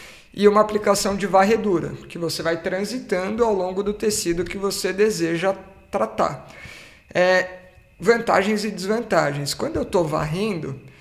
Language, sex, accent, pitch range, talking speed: Portuguese, male, Brazilian, 165-210 Hz, 130 wpm